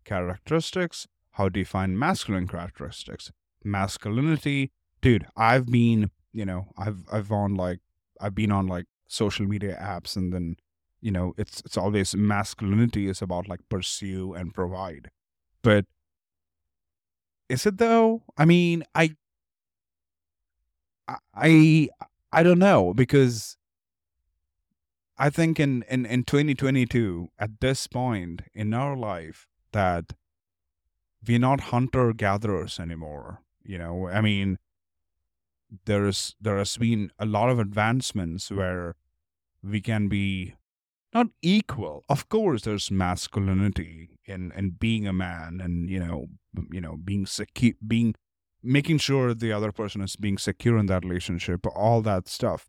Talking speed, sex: 135 wpm, male